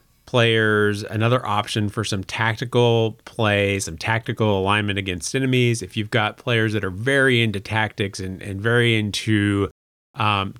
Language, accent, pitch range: English, American, 105-130 Hz